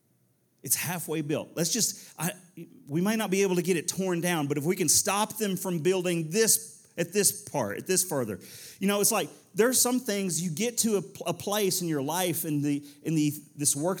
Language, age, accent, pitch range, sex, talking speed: English, 40-59, American, 135-185 Hz, male, 225 wpm